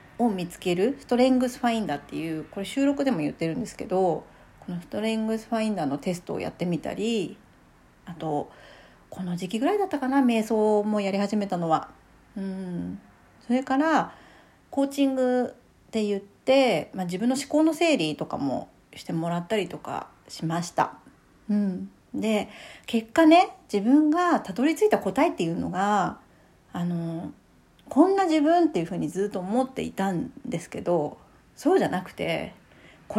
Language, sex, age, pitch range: Japanese, female, 40-59, 180-265 Hz